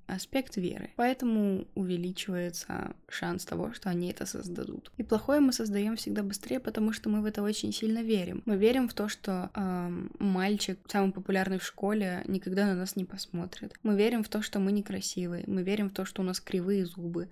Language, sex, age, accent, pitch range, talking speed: Russian, female, 20-39, native, 185-220 Hz, 195 wpm